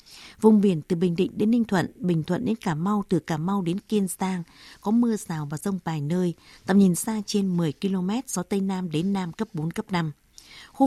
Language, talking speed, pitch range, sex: Vietnamese, 230 wpm, 175-215 Hz, female